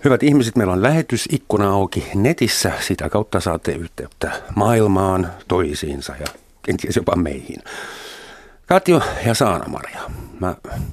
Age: 50-69